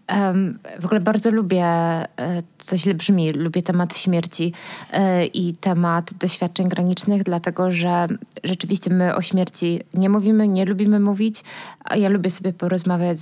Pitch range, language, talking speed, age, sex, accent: 180-205 Hz, Polish, 130 wpm, 20-39, female, native